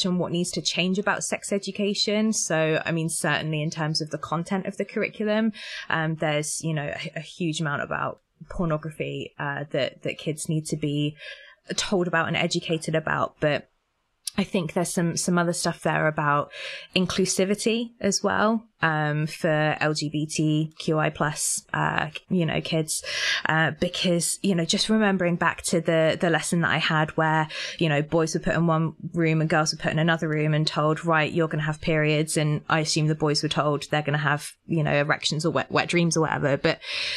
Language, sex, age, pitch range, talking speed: English, female, 20-39, 155-185 Hz, 195 wpm